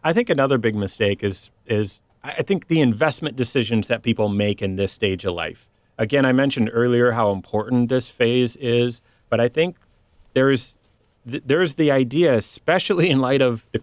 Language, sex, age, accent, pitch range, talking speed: English, male, 30-49, American, 105-130 Hz, 180 wpm